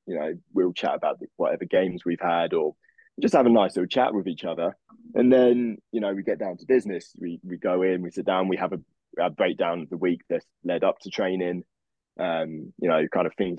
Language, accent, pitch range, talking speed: English, British, 85-100 Hz, 240 wpm